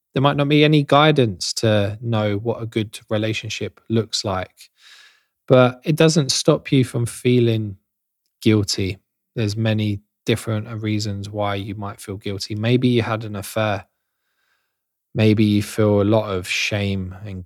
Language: English